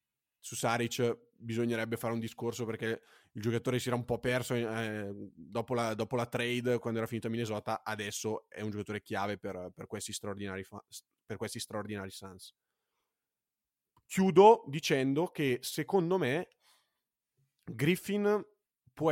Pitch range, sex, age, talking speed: 110-130 Hz, male, 20-39, 135 wpm